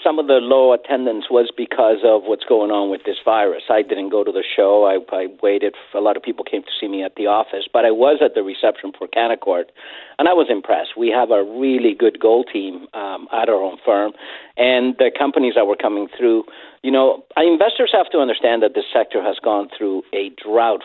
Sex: male